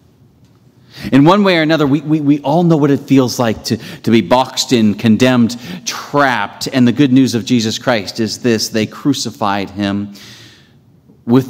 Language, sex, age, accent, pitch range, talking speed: English, male, 40-59, American, 110-135 Hz, 180 wpm